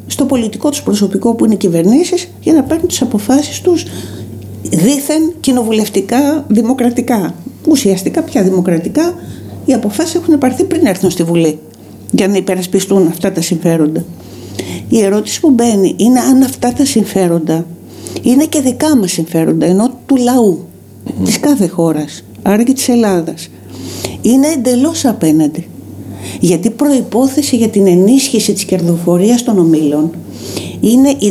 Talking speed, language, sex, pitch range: 140 wpm, Greek, female, 175-250 Hz